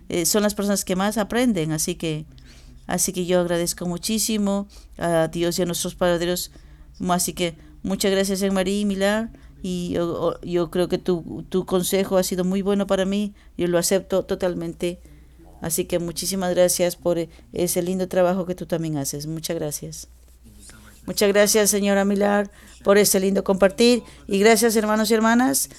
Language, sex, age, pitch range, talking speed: English, female, 40-59, 180-210 Hz, 165 wpm